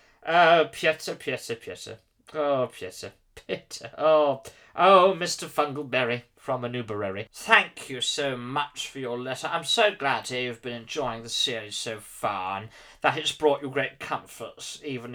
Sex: male